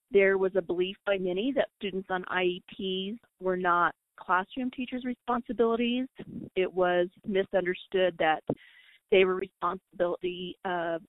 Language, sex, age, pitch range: English, female, 40-59, 185-215 Hz